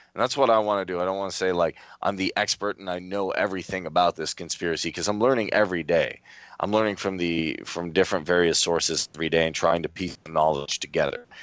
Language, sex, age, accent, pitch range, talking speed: English, male, 30-49, American, 85-110 Hz, 230 wpm